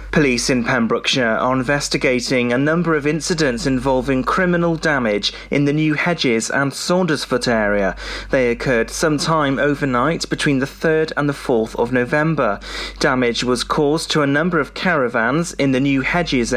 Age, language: 30-49, English